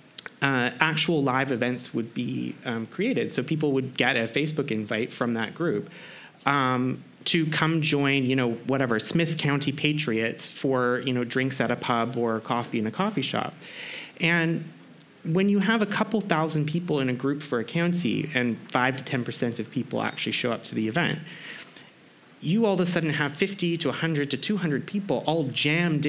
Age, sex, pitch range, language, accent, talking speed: 30-49, male, 130-165 Hz, Italian, American, 190 wpm